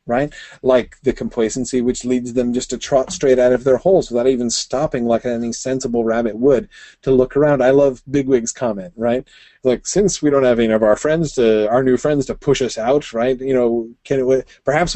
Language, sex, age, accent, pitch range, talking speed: English, male, 30-49, American, 115-140 Hz, 215 wpm